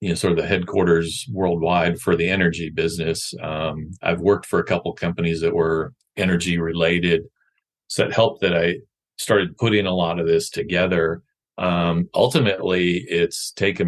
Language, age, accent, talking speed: English, 40-59, American, 170 wpm